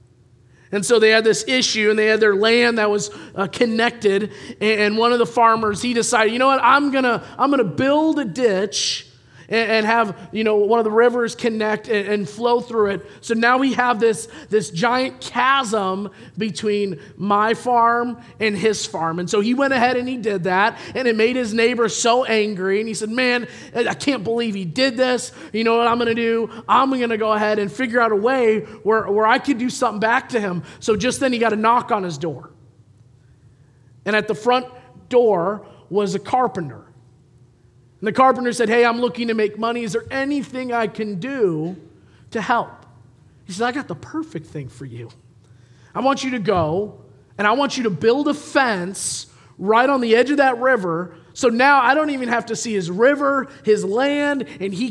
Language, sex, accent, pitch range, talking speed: English, male, American, 170-240 Hz, 210 wpm